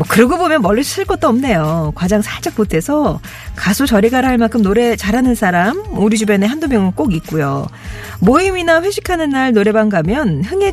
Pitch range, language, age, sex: 160-260 Hz, Korean, 40-59, female